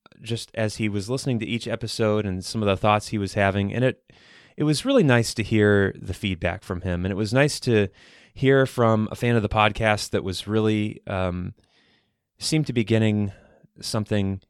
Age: 20-39